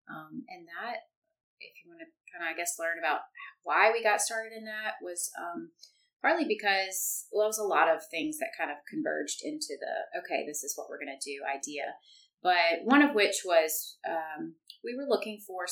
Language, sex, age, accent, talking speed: English, female, 30-49, American, 210 wpm